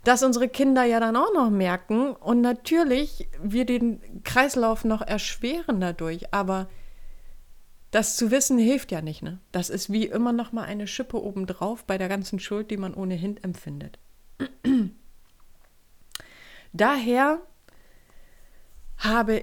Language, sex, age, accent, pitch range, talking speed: German, female, 30-49, German, 195-245 Hz, 130 wpm